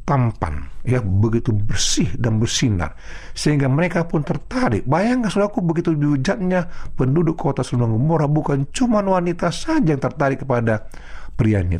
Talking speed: 130 wpm